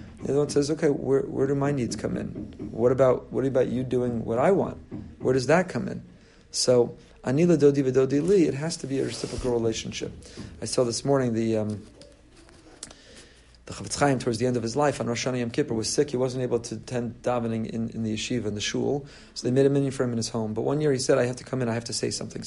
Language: English